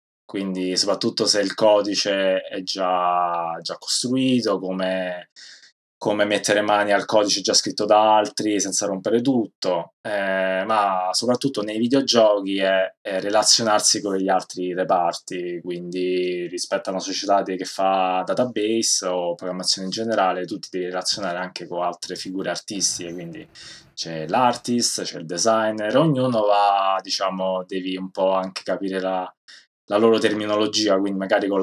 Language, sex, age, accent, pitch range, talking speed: Italian, male, 20-39, native, 90-110 Hz, 140 wpm